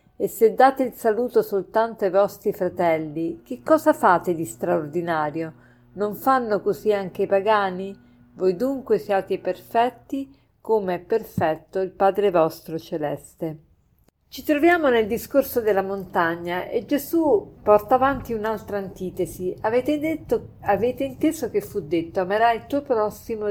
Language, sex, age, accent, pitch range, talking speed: Italian, female, 50-69, native, 175-250 Hz, 140 wpm